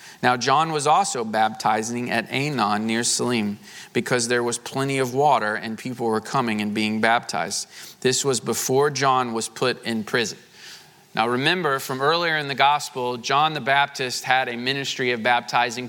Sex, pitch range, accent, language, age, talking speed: male, 130-170 Hz, American, English, 30-49, 170 wpm